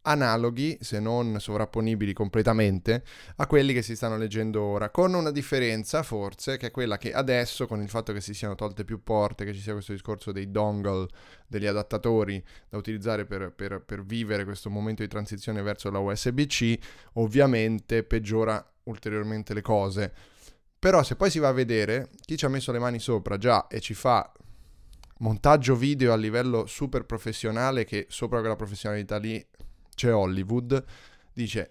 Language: Italian